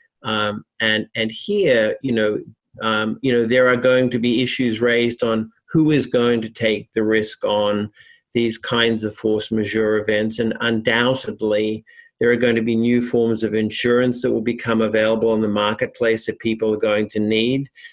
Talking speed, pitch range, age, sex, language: 185 wpm, 110-125 Hz, 50-69, male, English